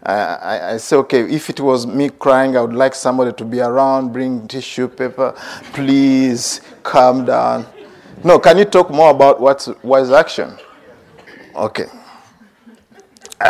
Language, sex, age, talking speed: English, male, 50-69, 140 wpm